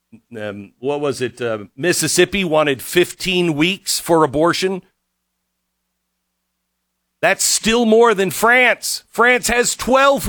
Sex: male